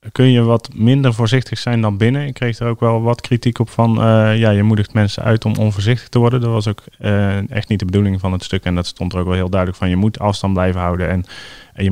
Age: 30-49